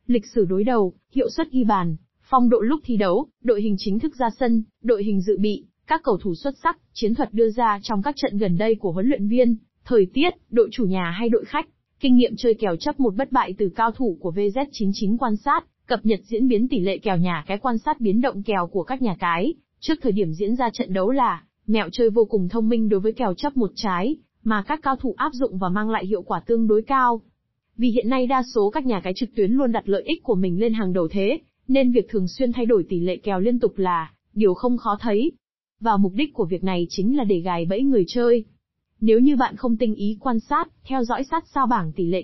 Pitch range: 200-255 Hz